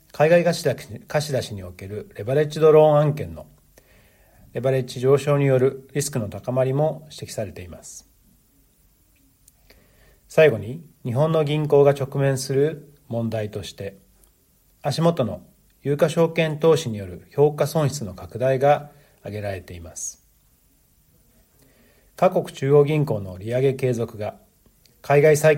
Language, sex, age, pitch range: Japanese, male, 40-59, 110-145 Hz